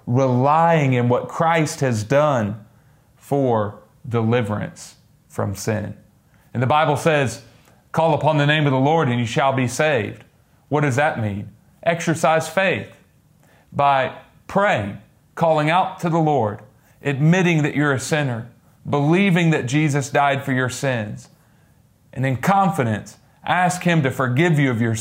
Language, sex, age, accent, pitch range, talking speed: English, male, 40-59, American, 120-150 Hz, 145 wpm